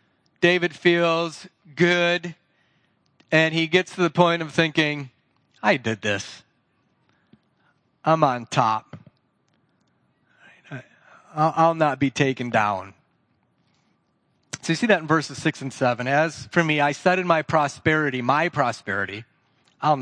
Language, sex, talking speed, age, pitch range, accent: English, male, 130 wpm, 30-49, 135-180 Hz, American